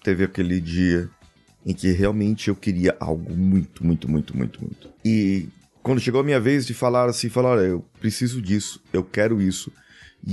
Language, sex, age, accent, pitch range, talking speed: Portuguese, male, 30-49, Brazilian, 90-125 Hz, 185 wpm